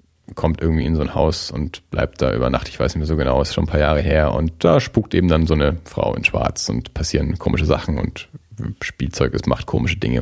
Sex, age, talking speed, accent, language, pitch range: male, 30-49, 255 wpm, German, German, 85-110 Hz